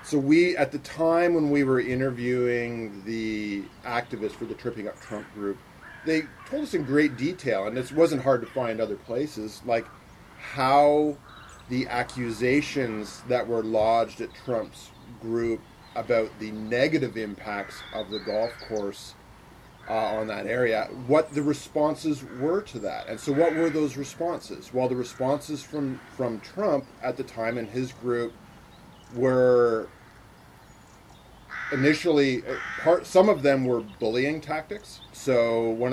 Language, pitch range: English, 115-140 Hz